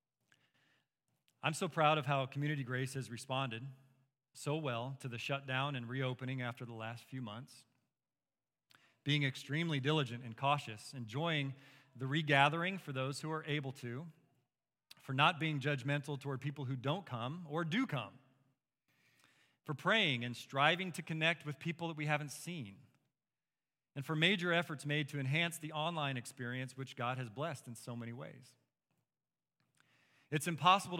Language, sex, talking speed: English, male, 155 wpm